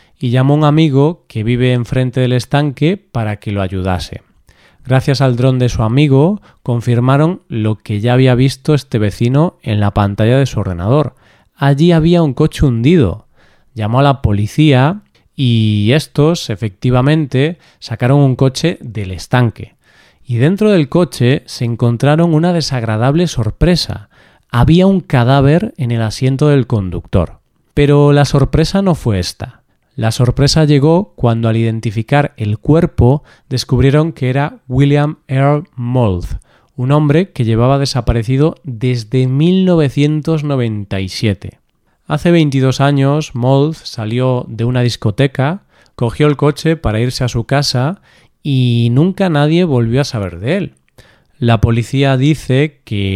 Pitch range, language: 115-150 Hz, Spanish